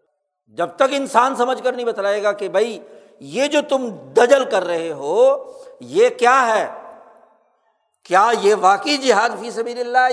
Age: 60-79